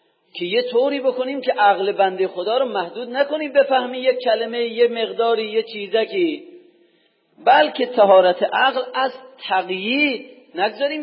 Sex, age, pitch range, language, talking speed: male, 40-59, 205-265 Hz, Persian, 130 wpm